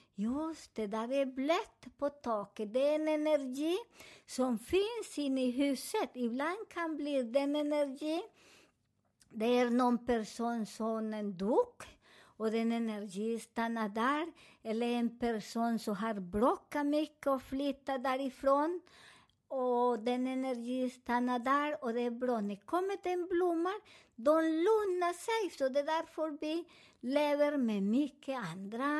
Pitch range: 235-305 Hz